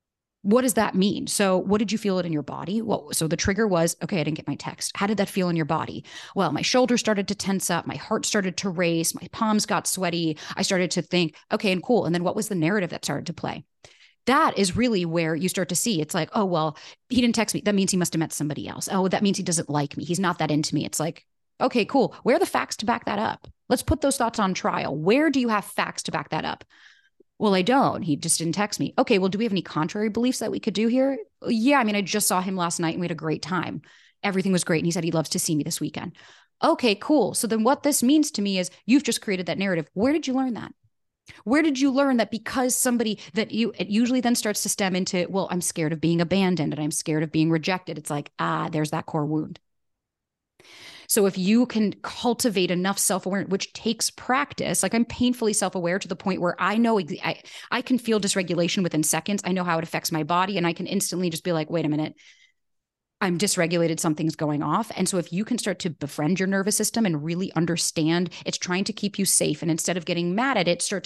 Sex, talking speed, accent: female, 260 wpm, American